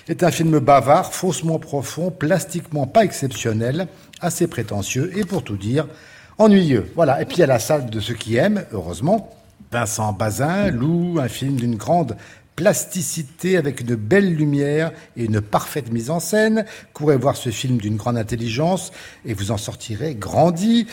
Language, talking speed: French, 165 wpm